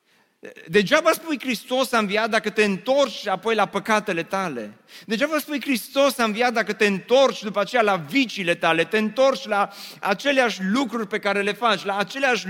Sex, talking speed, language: male, 175 wpm, Romanian